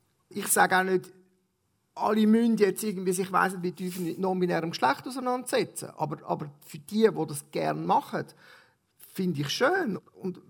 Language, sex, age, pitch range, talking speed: German, male, 40-59, 185-215 Hz, 155 wpm